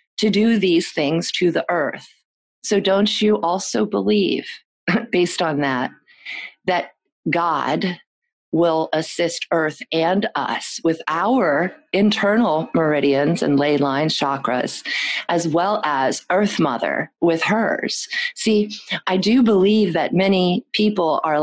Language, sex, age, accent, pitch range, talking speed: English, female, 40-59, American, 160-195 Hz, 125 wpm